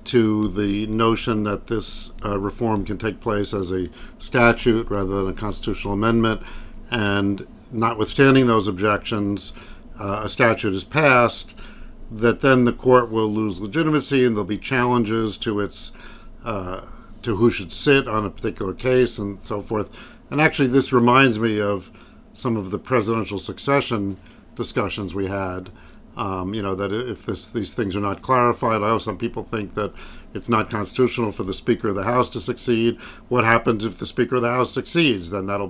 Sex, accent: male, American